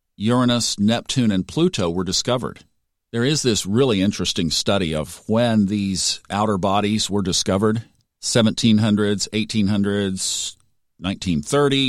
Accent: American